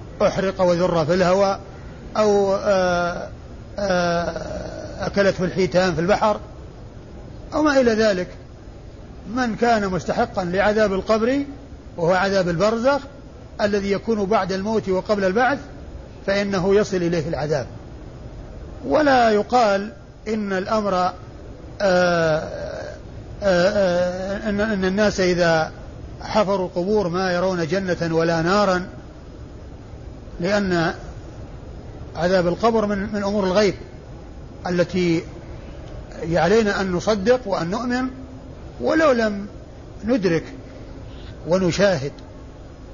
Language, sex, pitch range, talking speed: Arabic, male, 180-210 Hz, 90 wpm